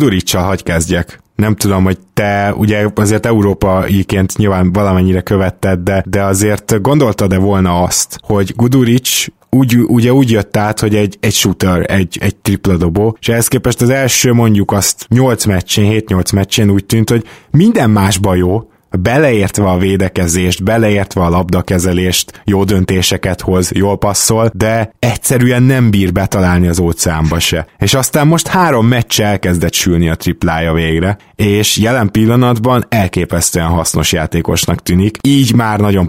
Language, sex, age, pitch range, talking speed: Hungarian, male, 20-39, 90-110 Hz, 150 wpm